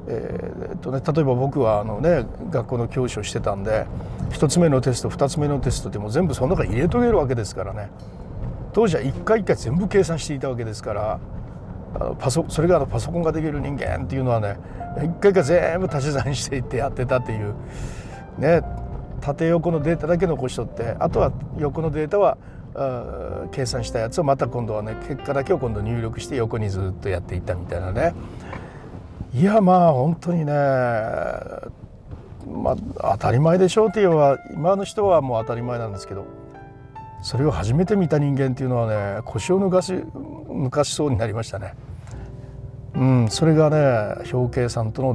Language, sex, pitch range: Japanese, male, 115-150 Hz